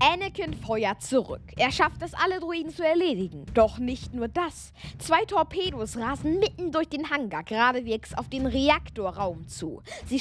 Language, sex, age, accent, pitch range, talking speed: German, female, 20-39, German, 240-330 Hz, 160 wpm